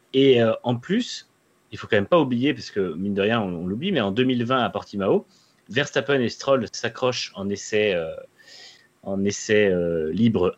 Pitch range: 100-145 Hz